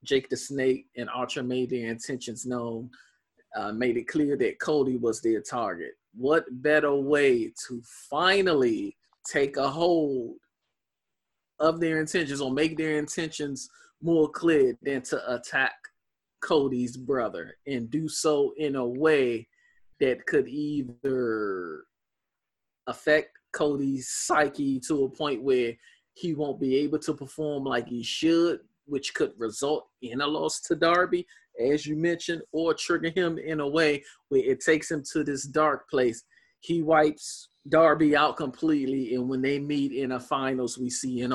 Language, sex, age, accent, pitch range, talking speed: English, male, 20-39, American, 130-160 Hz, 150 wpm